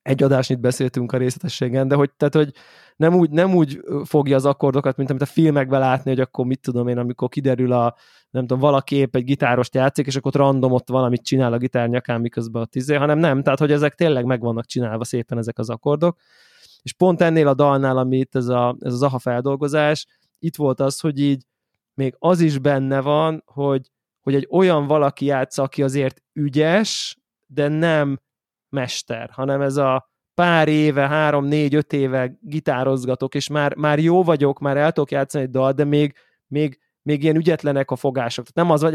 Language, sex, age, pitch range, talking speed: Hungarian, male, 20-39, 130-155 Hz, 200 wpm